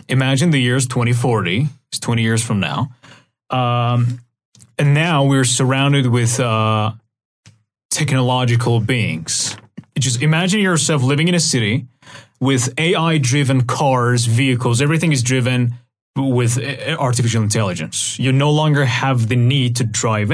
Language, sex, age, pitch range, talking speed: Persian, male, 30-49, 120-145 Hz, 125 wpm